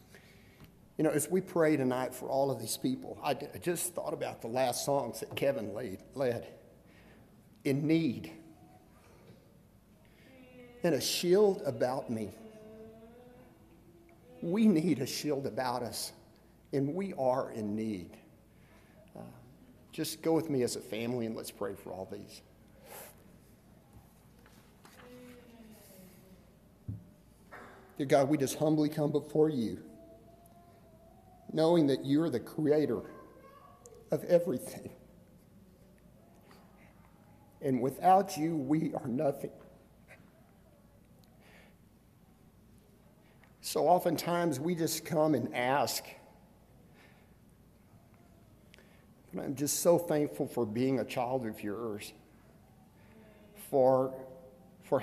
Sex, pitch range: male, 125-170 Hz